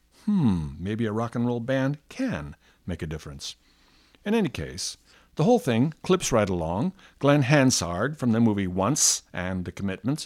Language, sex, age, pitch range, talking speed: English, male, 60-79, 95-140 Hz, 170 wpm